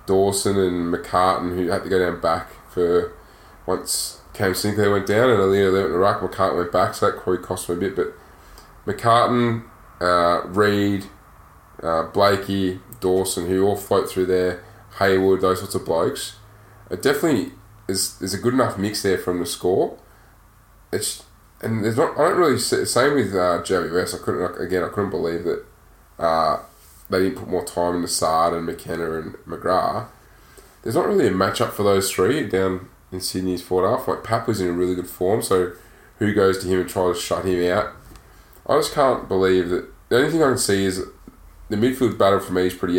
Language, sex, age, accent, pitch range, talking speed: English, male, 20-39, Australian, 90-100 Hz, 200 wpm